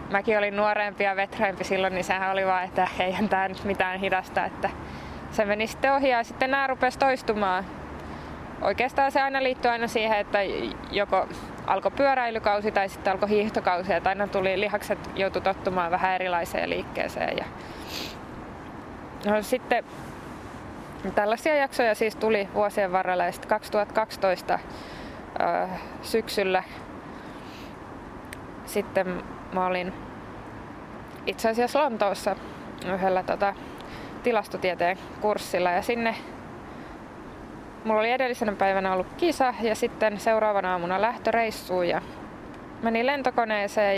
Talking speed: 120 wpm